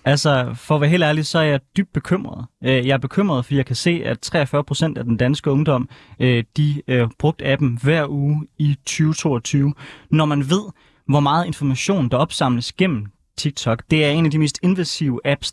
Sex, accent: male, native